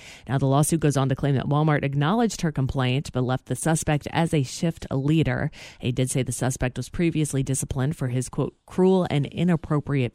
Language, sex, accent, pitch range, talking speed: English, female, American, 125-150 Hz, 200 wpm